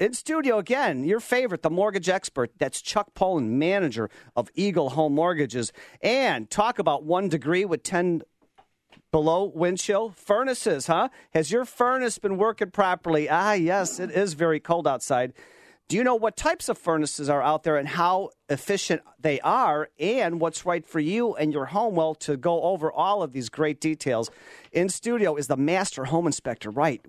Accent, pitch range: American, 155-205 Hz